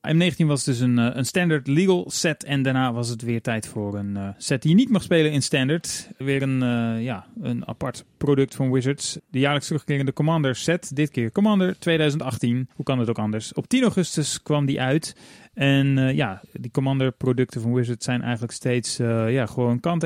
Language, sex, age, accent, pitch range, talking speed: Dutch, male, 30-49, Dutch, 120-155 Hz, 195 wpm